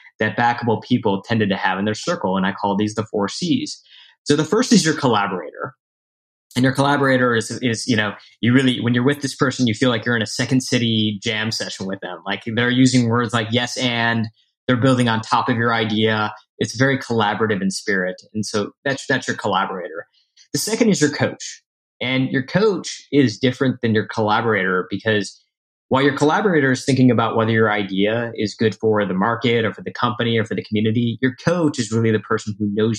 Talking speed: 215 wpm